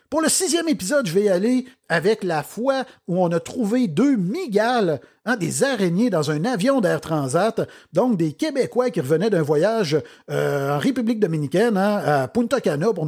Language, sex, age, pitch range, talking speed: French, male, 50-69, 170-245 Hz, 190 wpm